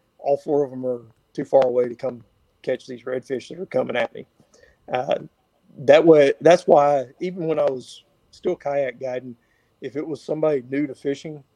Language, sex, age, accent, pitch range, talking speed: English, male, 50-69, American, 125-150 Hz, 190 wpm